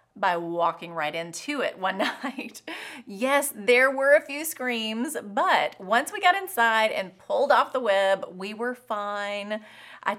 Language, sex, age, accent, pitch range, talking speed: English, female, 30-49, American, 175-245 Hz, 160 wpm